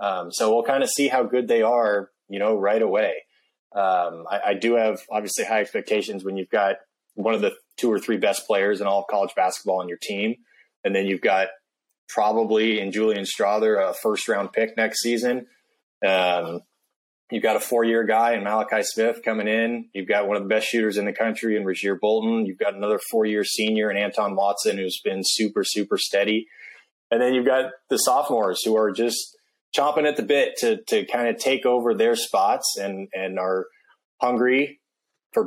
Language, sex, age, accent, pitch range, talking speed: English, male, 20-39, American, 100-120 Hz, 200 wpm